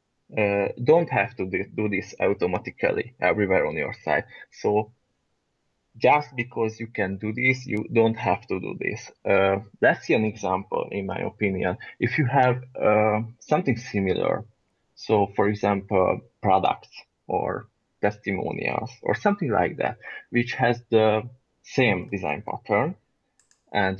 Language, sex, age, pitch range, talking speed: English, male, 20-39, 100-125 Hz, 140 wpm